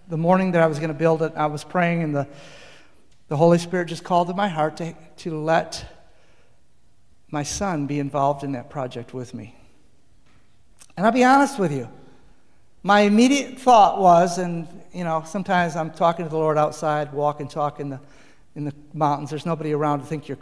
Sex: male